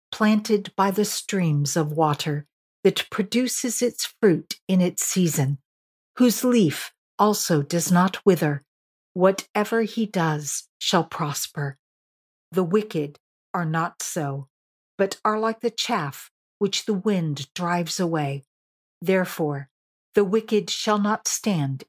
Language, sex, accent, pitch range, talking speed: English, female, American, 155-210 Hz, 125 wpm